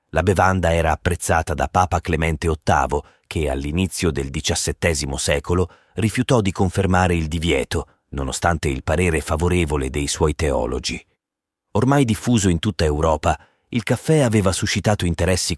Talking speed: 135 wpm